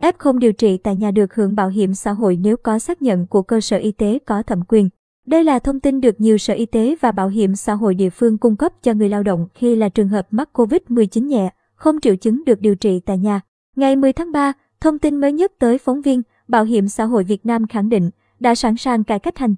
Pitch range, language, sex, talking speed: 205-255 Hz, Vietnamese, male, 265 wpm